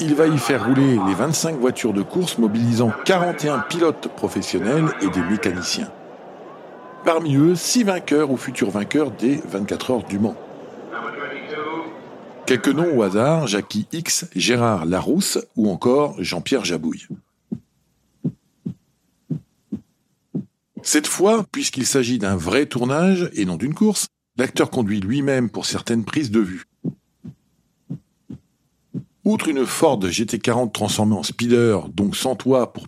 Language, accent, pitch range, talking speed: French, French, 110-155 Hz, 130 wpm